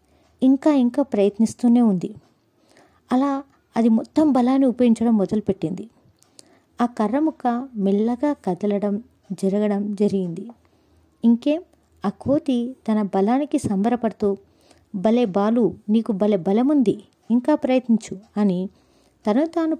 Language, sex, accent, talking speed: Telugu, female, native, 95 wpm